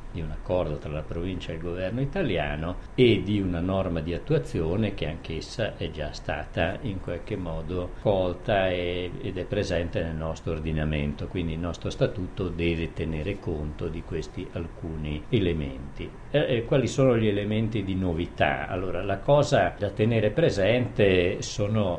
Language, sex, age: Italian, male, 50-69